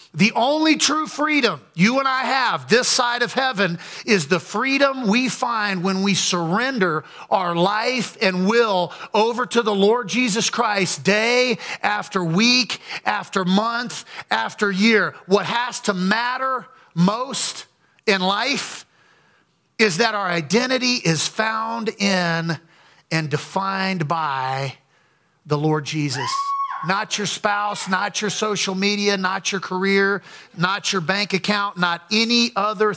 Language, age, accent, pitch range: English, 40-59, American, 175-220 Hz